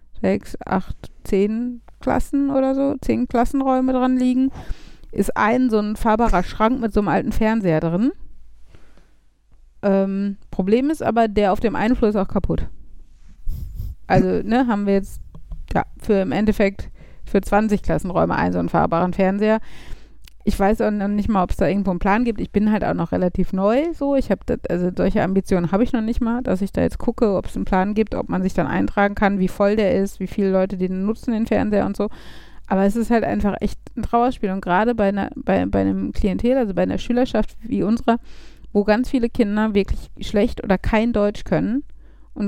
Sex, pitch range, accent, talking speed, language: female, 195-235 Hz, German, 200 wpm, German